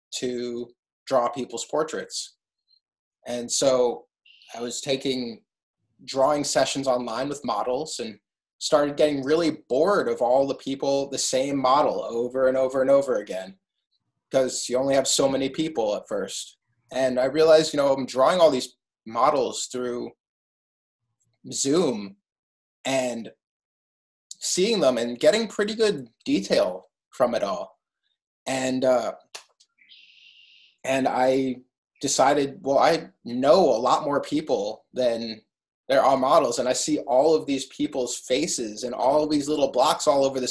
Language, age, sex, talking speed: English, 20-39, male, 145 wpm